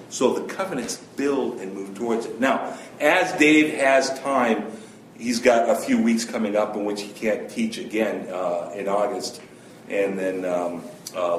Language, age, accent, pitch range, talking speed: English, 50-69, American, 135-220 Hz, 175 wpm